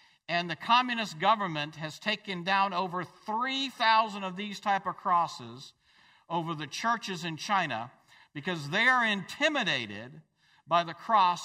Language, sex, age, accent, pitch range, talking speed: English, male, 50-69, American, 150-205 Hz, 135 wpm